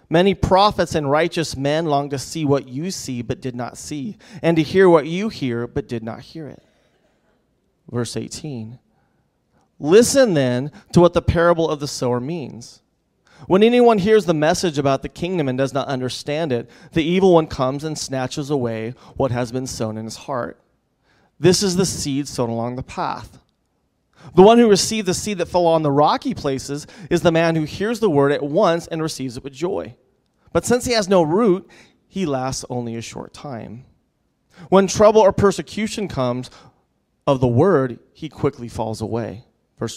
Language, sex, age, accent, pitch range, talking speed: English, male, 30-49, American, 125-180 Hz, 185 wpm